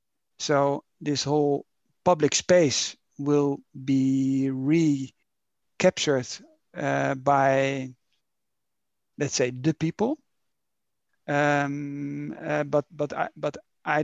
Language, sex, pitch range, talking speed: English, male, 135-155 Hz, 90 wpm